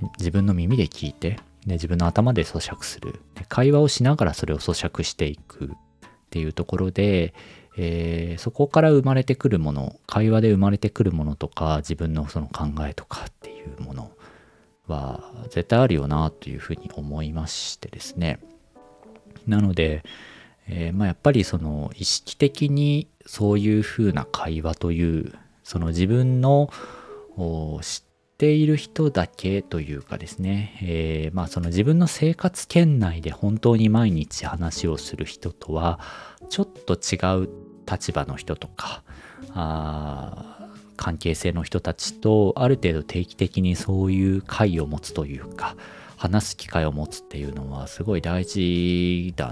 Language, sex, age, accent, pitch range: Japanese, male, 40-59, native, 80-110 Hz